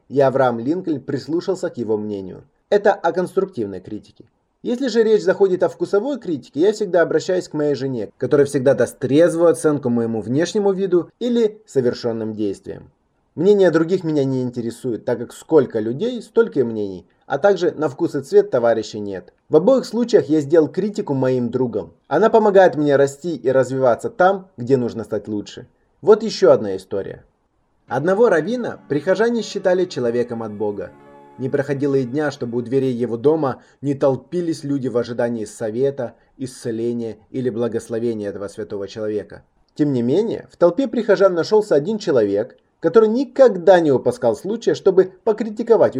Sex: male